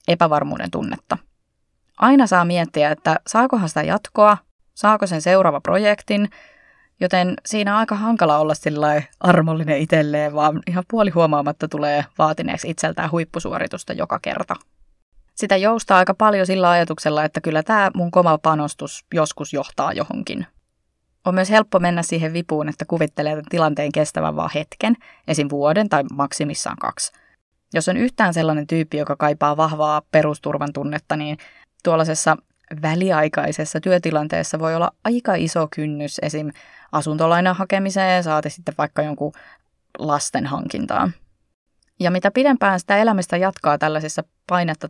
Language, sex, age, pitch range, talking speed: Finnish, female, 20-39, 150-190 Hz, 130 wpm